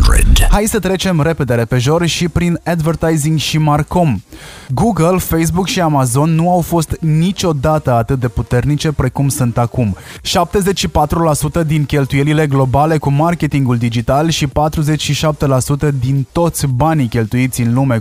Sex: male